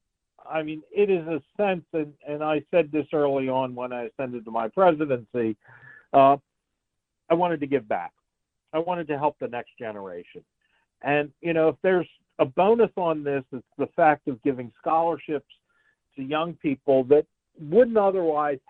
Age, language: 50-69, English